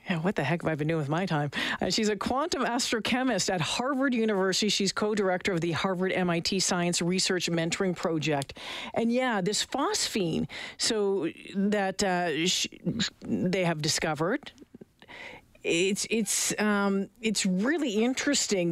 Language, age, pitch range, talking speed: English, 40-59, 175-215 Hz, 145 wpm